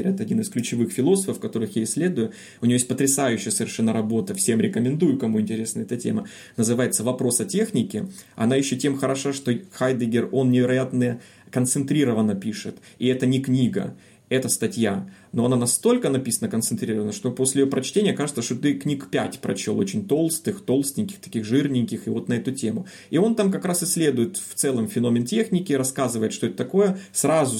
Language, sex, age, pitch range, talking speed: Russian, male, 30-49, 115-145 Hz, 175 wpm